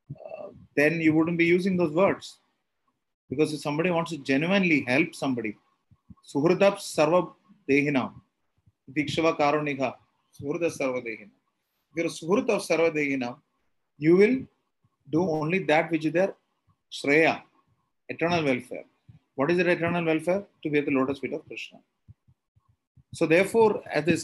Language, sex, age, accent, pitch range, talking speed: English, male, 30-49, Indian, 130-165 Hz, 105 wpm